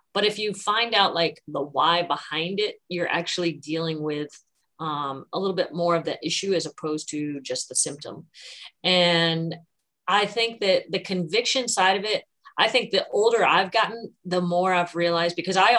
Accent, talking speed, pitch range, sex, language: American, 185 wpm, 165-200 Hz, female, English